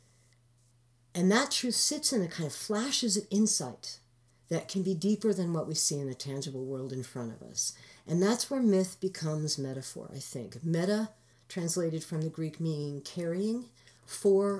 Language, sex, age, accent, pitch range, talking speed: English, female, 50-69, American, 140-190 Hz, 175 wpm